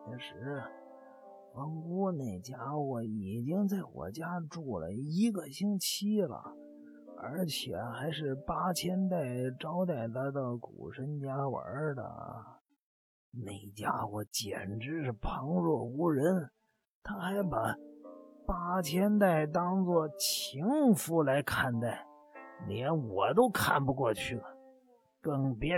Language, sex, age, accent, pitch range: Chinese, male, 50-69, native, 120-180 Hz